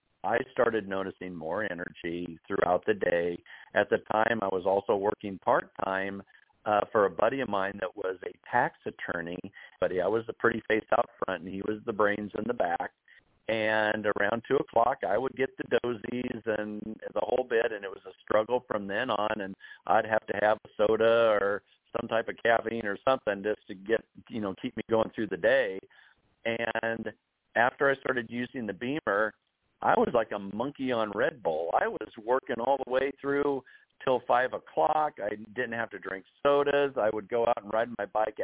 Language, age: English, 50-69